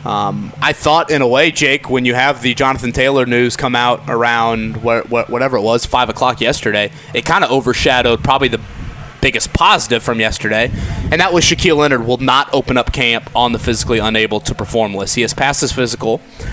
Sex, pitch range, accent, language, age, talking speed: male, 115-140 Hz, American, English, 30-49, 200 wpm